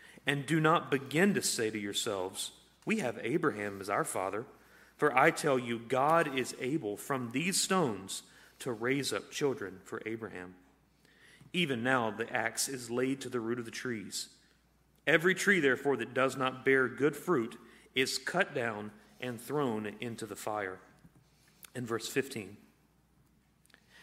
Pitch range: 115-145 Hz